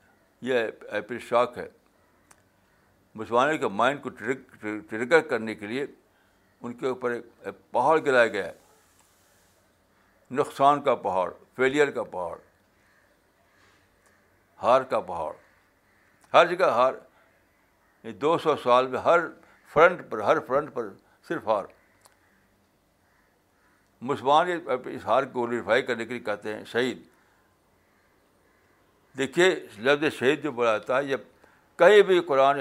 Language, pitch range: Urdu, 95-140 Hz